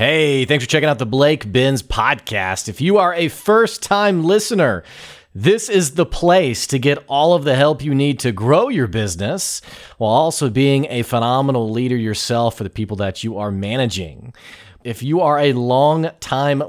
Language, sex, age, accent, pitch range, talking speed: English, male, 30-49, American, 115-150 Hz, 180 wpm